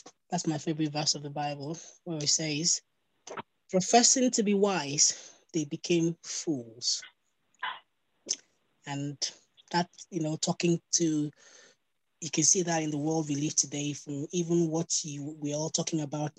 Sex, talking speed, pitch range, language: female, 145 wpm, 155-200 Hz, English